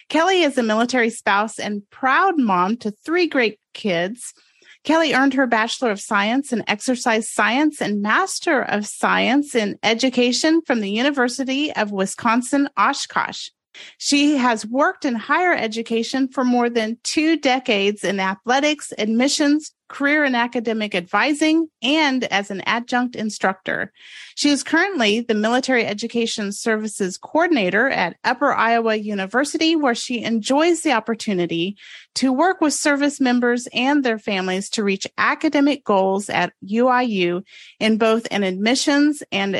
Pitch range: 210-285 Hz